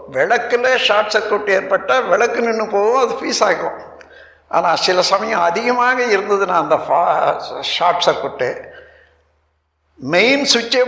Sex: male